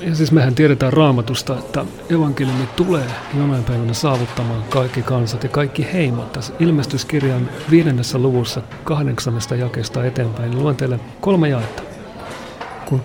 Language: Finnish